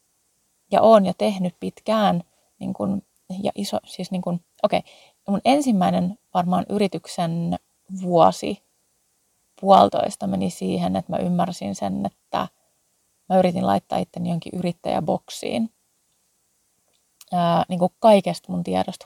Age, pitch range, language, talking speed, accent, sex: 30-49, 160-210 Hz, Finnish, 120 wpm, native, female